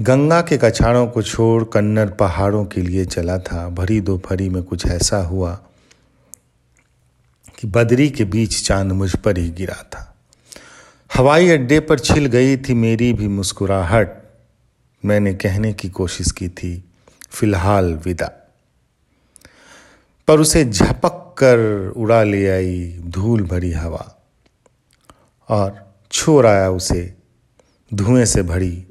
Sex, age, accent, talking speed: male, 40-59, native, 125 wpm